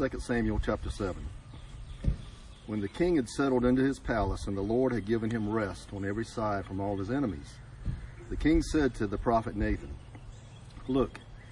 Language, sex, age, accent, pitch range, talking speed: English, male, 50-69, American, 105-130 Hz, 175 wpm